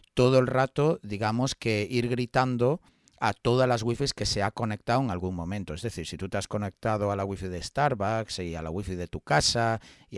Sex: male